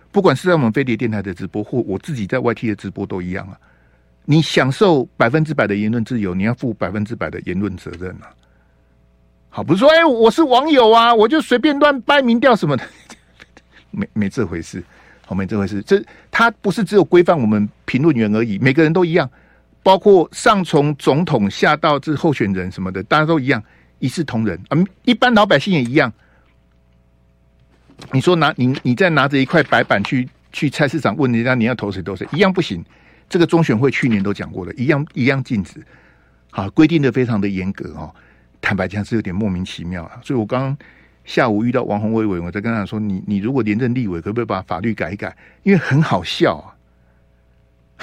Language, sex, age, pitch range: Chinese, male, 60-79, 90-150 Hz